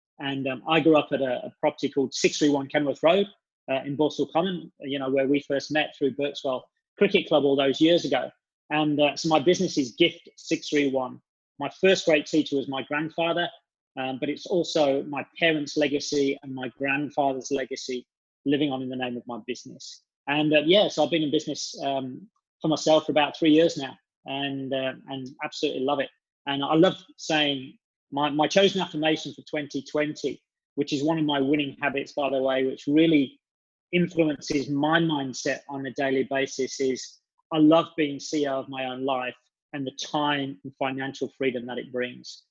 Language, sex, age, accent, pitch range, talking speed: English, male, 20-39, British, 135-155 Hz, 190 wpm